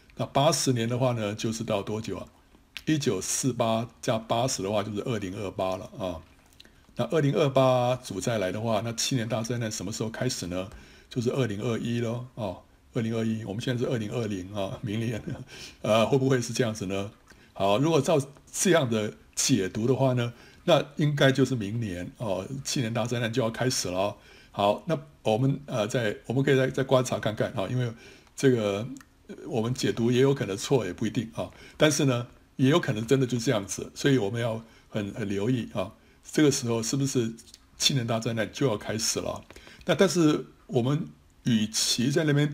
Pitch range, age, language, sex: 110-135 Hz, 60-79, Chinese, male